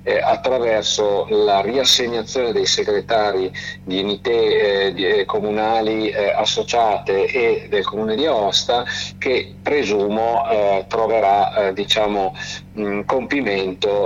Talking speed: 85 wpm